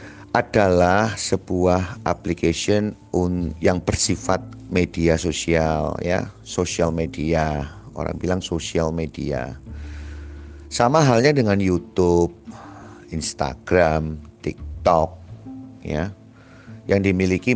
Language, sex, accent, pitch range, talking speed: Indonesian, male, native, 80-110 Hz, 80 wpm